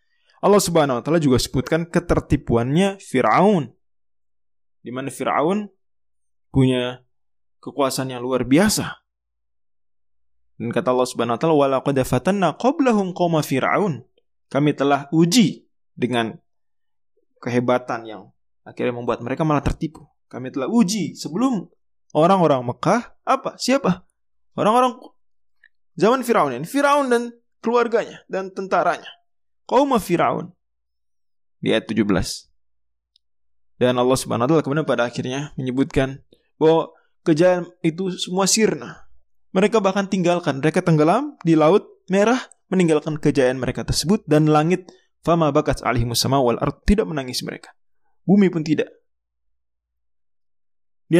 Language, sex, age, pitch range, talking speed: Indonesian, male, 20-39, 120-190 Hz, 110 wpm